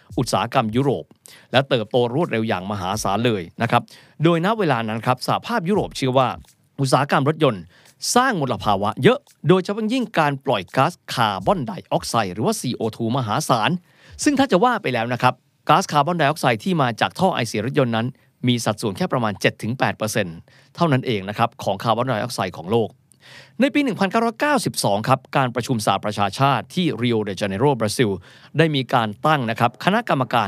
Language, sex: Thai, male